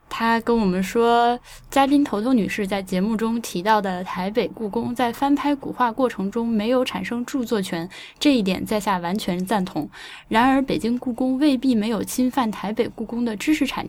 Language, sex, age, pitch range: Chinese, female, 10-29, 200-260 Hz